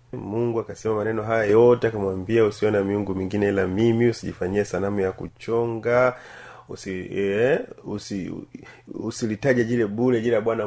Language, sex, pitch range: Swahili, male, 105-135 Hz